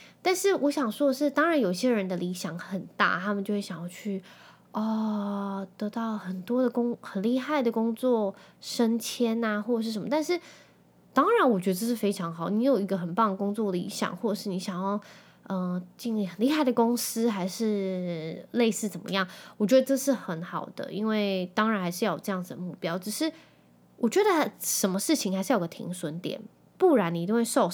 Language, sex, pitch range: Chinese, female, 185-235 Hz